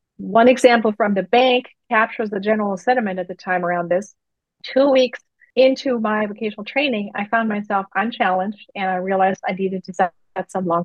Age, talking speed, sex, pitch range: 40-59, 185 wpm, female, 190-240 Hz